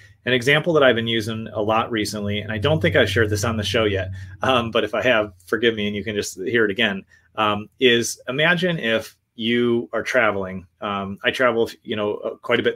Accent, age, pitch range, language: American, 30-49, 105-125 Hz, English